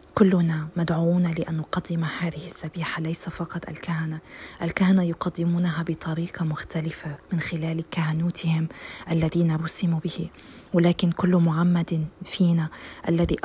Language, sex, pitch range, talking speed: Arabic, female, 165-185 Hz, 105 wpm